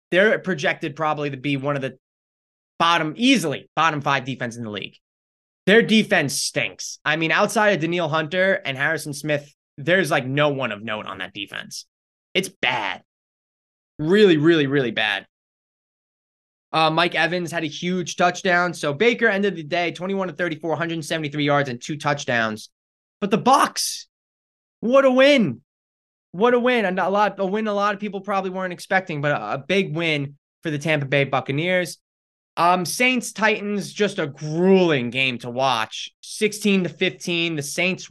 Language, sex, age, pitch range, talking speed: English, male, 20-39, 140-190 Hz, 170 wpm